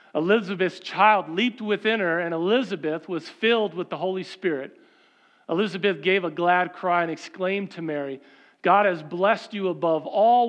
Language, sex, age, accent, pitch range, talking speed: English, male, 40-59, American, 140-185 Hz, 160 wpm